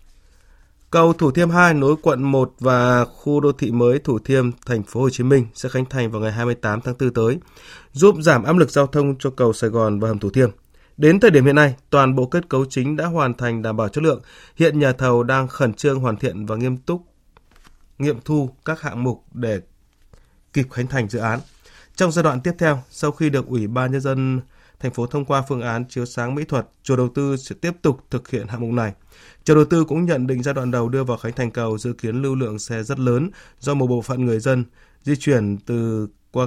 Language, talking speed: Vietnamese, 240 wpm